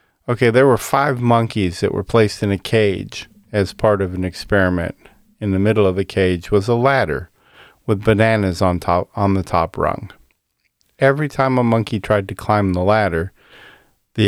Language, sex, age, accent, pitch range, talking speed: English, male, 40-59, American, 95-115 Hz, 180 wpm